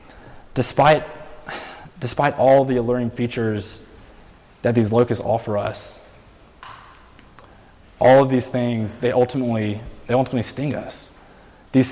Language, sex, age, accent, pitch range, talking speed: English, male, 20-39, American, 105-120 Hz, 110 wpm